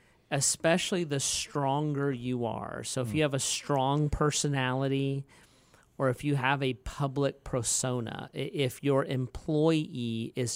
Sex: male